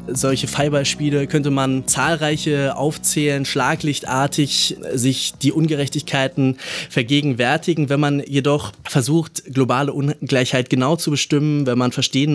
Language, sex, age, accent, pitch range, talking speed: German, male, 20-39, German, 125-145 Hz, 110 wpm